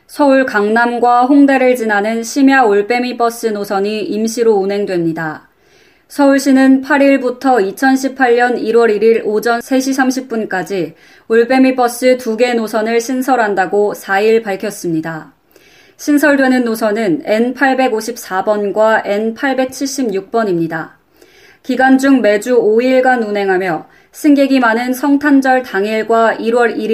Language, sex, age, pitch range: Korean, female, 20-39, 210-270 Hz